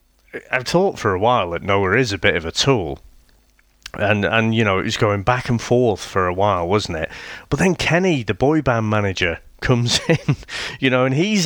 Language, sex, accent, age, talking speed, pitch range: English, male, British, 30-49, 215 wpm, 105-150 Hz